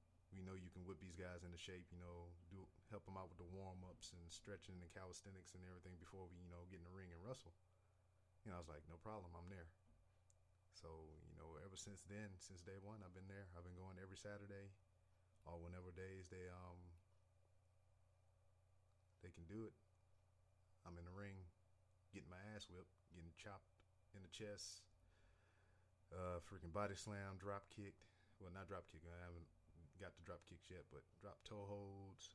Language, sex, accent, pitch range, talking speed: English, male, American, 90-95 Hz, 195 wpm